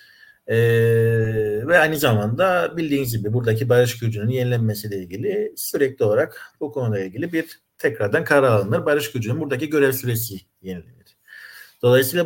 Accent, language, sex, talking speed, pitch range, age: native, Turkish, male, 130 wpm, 105-155 Hz, 50-69